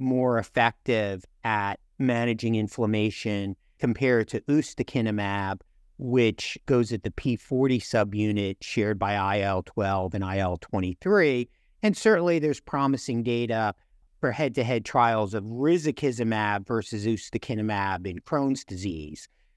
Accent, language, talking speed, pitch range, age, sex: American, English, 105 wpm, 105-140 Hz, 50-69, male